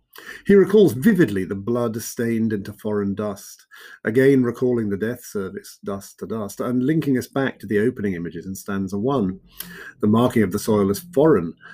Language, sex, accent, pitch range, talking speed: English, male, British, 90-120 Hz, 180 wpm